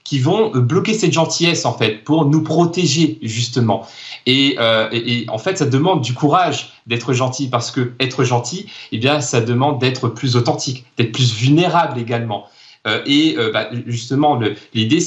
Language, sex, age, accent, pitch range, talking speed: French, male, 30-49, French, 120-150 Hz, 185 wpm